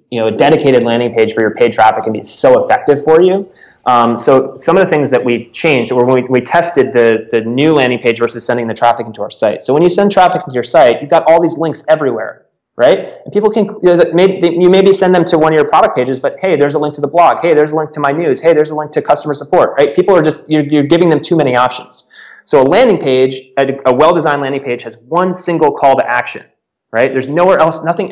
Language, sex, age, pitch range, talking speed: English, male, 30-49, 120-155 Hz, 265 wpm